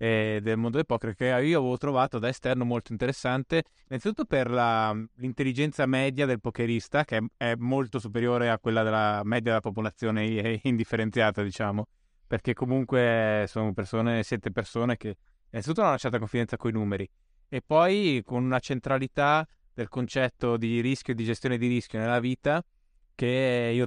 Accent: native